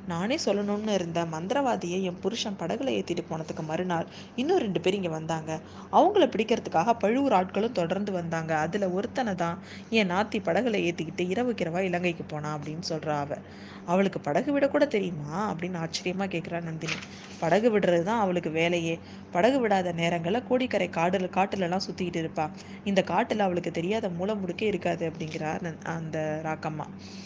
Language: Tamil